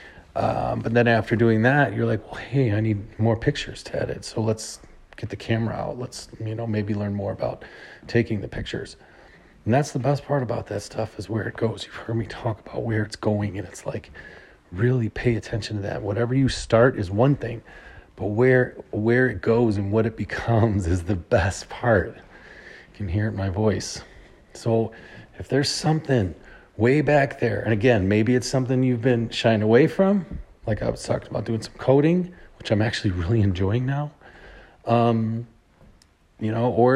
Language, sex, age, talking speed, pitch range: English, male, 30-49, 195 wpm, 105-120 Hz